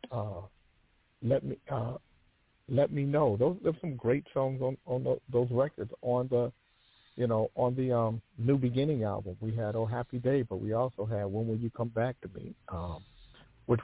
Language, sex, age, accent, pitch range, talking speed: English, male, 50-69, American, 105-125 Hz, 190 wpm